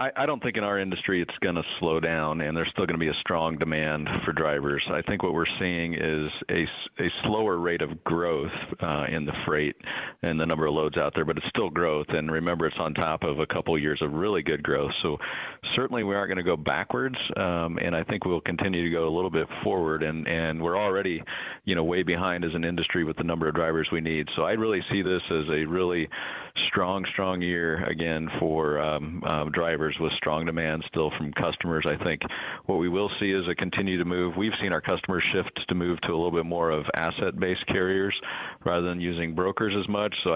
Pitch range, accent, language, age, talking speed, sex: 80-90 Hz, American, English, 40-59, 230 wpm, male